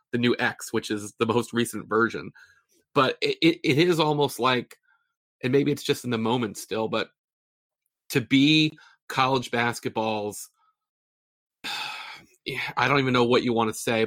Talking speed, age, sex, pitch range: 160 wpm, 30-49, male, 110-135 Hz